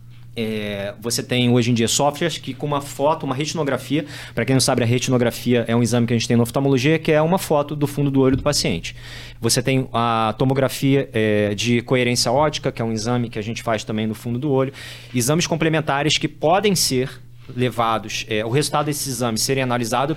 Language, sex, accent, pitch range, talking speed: Portuguese, male, Brazilian, 120-145 Hz, 215 wpm